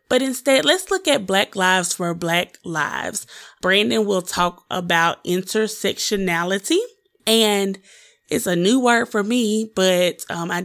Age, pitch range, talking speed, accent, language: 20-39, 180-230 Hz, 140 wpm, American, English